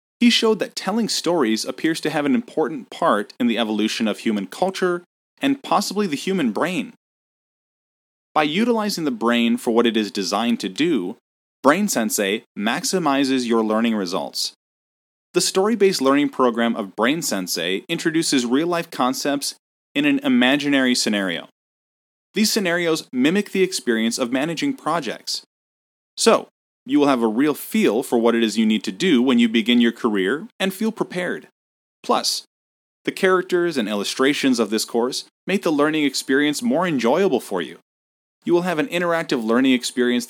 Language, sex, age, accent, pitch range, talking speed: English, male, 30-49, American, 120-195 Hz, 160 wpm